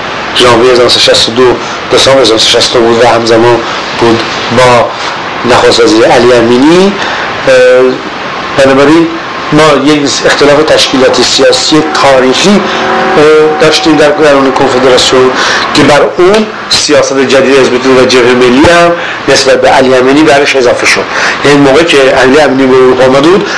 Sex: male